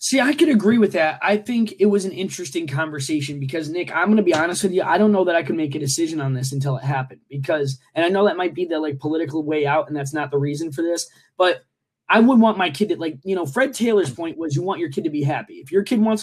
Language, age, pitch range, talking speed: English, 20-39, 160-210 Hz, 295 wpm